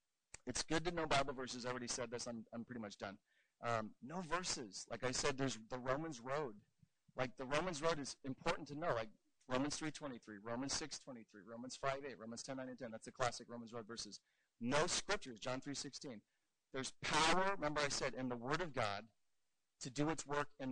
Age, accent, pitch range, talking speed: 40-59, American, 120-155 Hz, 200 wpm